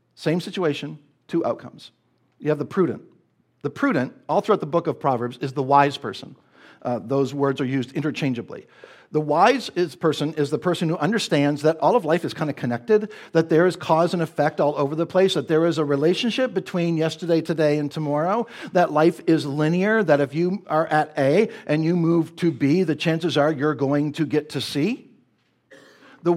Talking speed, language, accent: 200 wpm, English, American